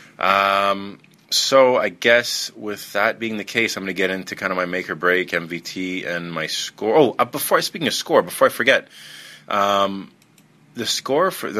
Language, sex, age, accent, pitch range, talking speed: English, male, 30-49, American, 85-100 Hz, 195 wpm